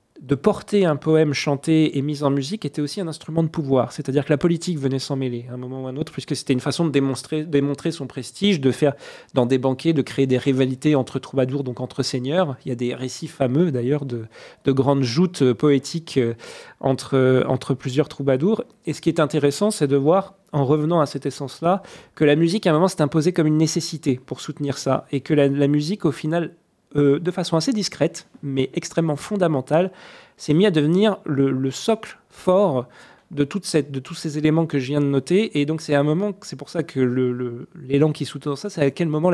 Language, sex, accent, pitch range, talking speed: French, male, French, 135-165 Hz, 230 wpm